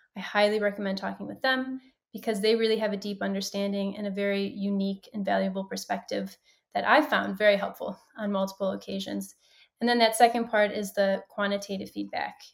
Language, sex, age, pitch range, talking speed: English, female, 20-39, 200-230 Hz, 175 wpm